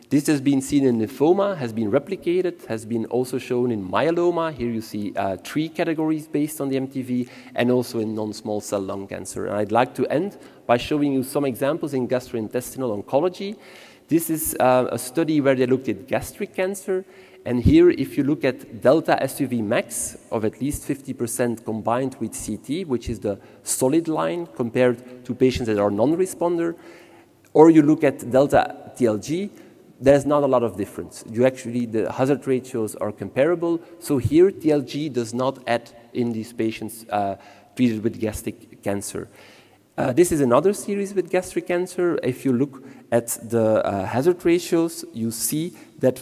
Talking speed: 175 wpm